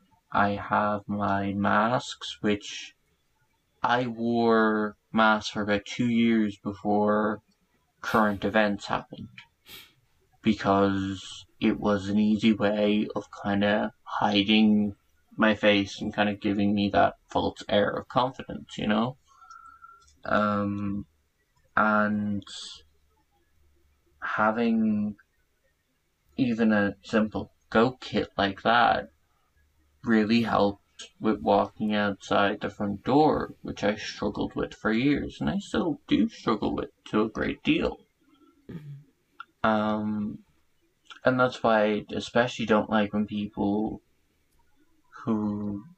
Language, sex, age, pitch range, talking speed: English, male, 20-39, 100-110 Hz, 110 wpm